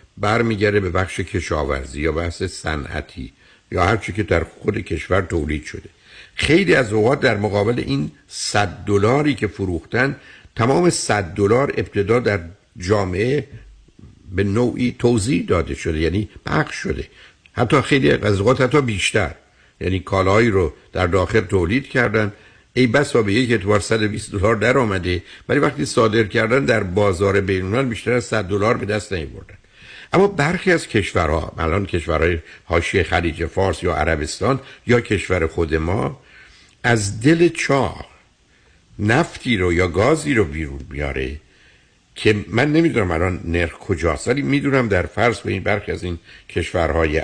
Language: Persian